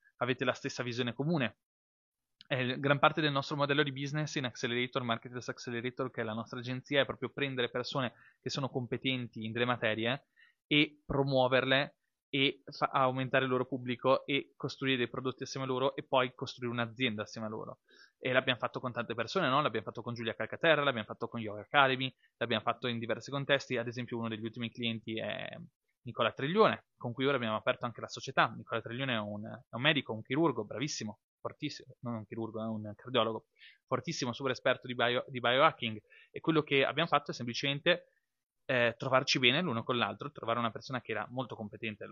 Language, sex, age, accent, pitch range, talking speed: Italian, male, 20-39, native, 115-140 Hz, 195 wpm